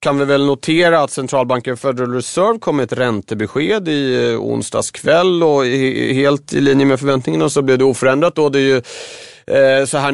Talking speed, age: 180 wpm, 30-49